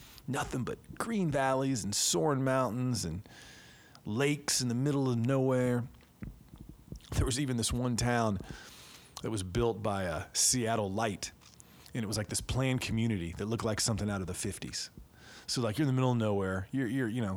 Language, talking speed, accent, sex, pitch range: English, 185 wpm, American, male, 100-130 Hz